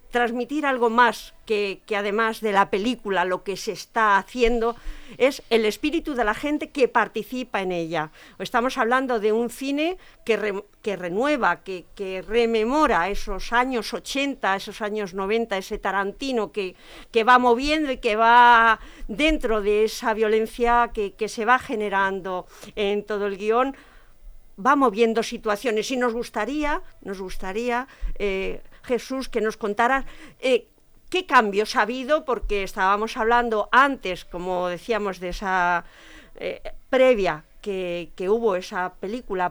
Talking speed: 145 wpm